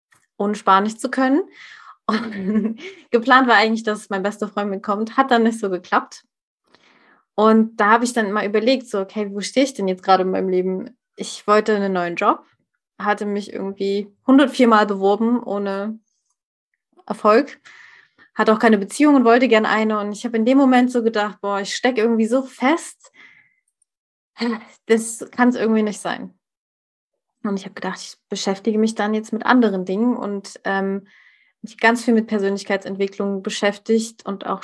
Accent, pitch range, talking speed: German, 200-240 Hz, 170 wpm